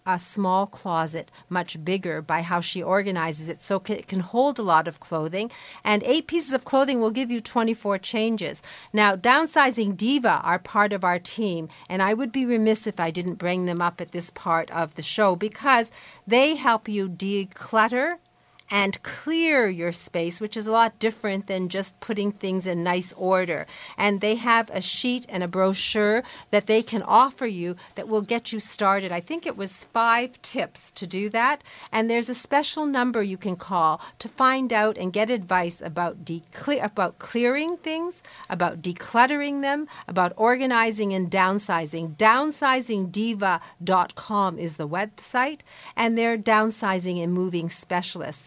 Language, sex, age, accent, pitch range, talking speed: English, female, 50-69, American, 185-235 Hz, 170 wpm